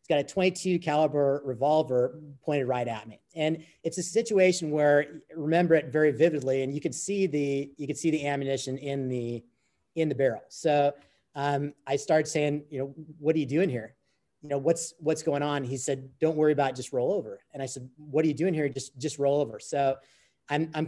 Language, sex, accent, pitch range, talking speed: English, male, American, 130-155 Hz, 220 wpm